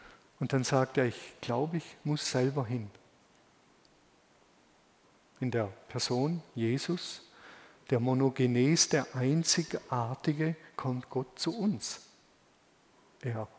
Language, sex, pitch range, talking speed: German, male, 130-165 Hz, 100 wpm